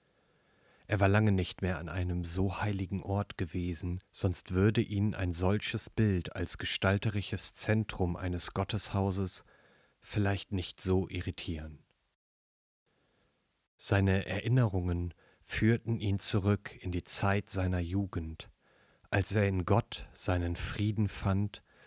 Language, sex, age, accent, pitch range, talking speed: German, male, 40-59, German, 90-105 Hz, 120 wpm